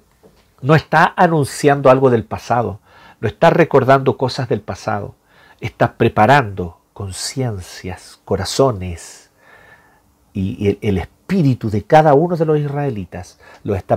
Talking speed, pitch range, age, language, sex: 120 wpm, 105-140 Hz, 40-59, Spanish, male